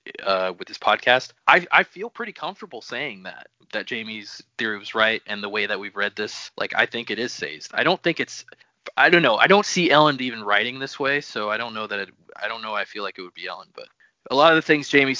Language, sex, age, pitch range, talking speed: English, male, 20-39, 110-160 Hz, 265 wpm